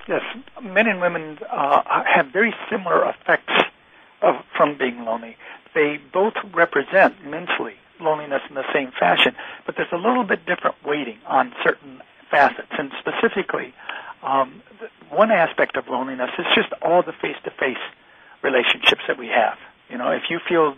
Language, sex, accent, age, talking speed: English, male, American, 60-79, 160 wpm